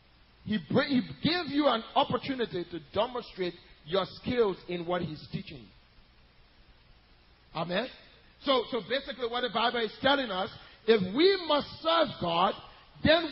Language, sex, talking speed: English, male, 140 wpm